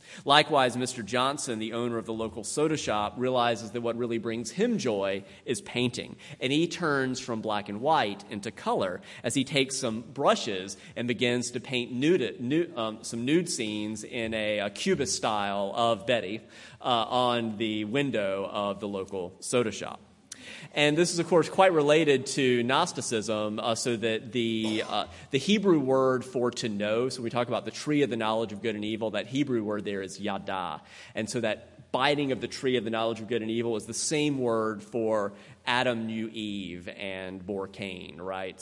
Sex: male